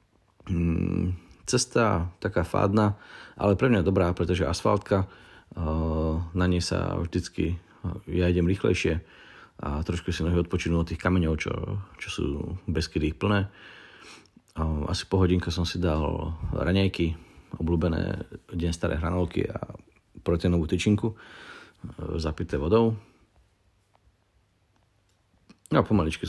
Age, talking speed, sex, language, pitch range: 40-59, 105 wpm, male, Slovak, 80-95 Hz